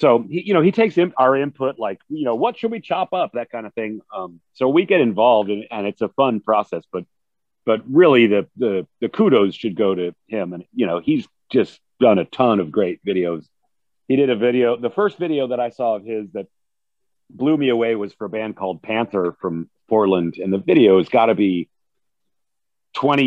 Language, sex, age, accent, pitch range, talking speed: English, male, 40-59, American, 110-155 Hz, 215 wpm